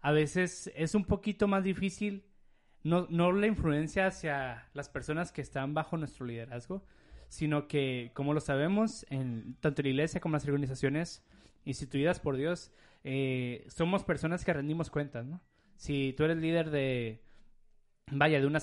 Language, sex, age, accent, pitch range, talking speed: Spanish, male, 20-39, Mexican, 130-170 Hz, 165 wpm